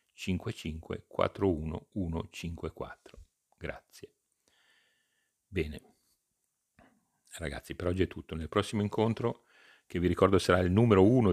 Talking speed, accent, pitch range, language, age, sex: 95 wpm, native, 80-95 Hz, Italian, 40-59, male